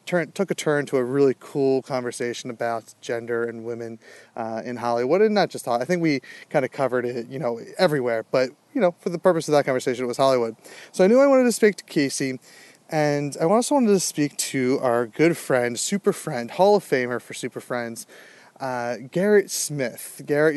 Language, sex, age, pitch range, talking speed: English, male, 30-49, 125-155 Hz, 210 wpm